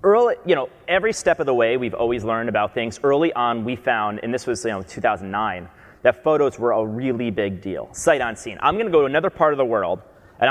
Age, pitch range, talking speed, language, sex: 30-49, 115-140 Hz, 240 wpm, English, male